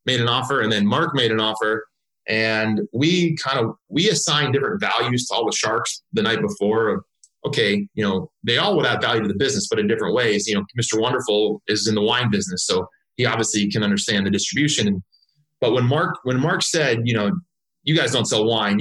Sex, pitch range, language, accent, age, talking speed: male, 110-140 Hz, English, American, 30-49, 215 wpm